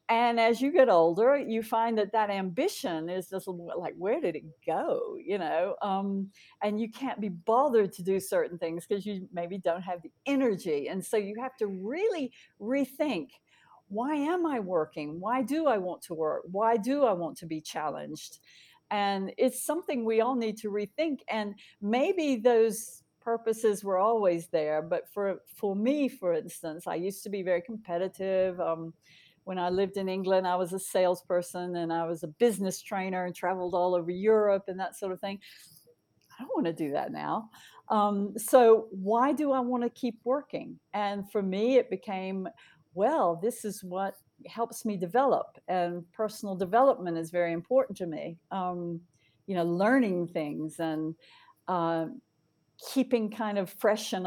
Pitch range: 180-230 Hz